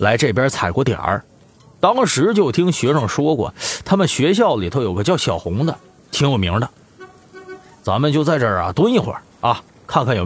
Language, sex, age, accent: Chinese, male, 30-49, native